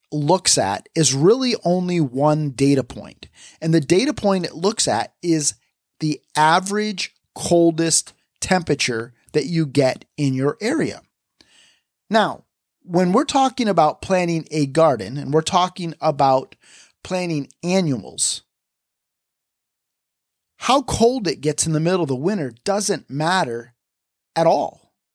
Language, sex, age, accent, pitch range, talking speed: English, male, 30-49, American, 145-200 Hz, 130 wpm